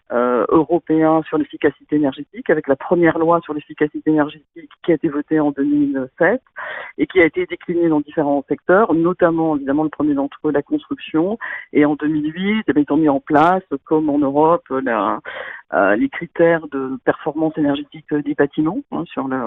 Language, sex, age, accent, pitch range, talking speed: French, female, 50-69, French, 140-165 Hz, 180 wpm